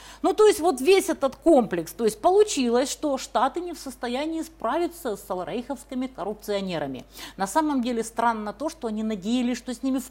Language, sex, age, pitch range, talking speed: Russian, female, 40-59, 190-275 Hz, 185 wpm